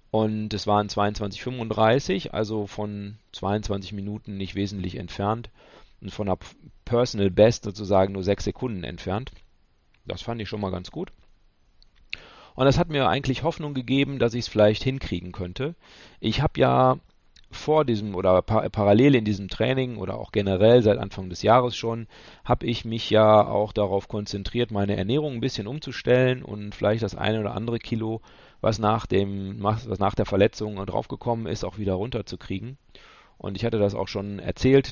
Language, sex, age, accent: German, male, 40-59, German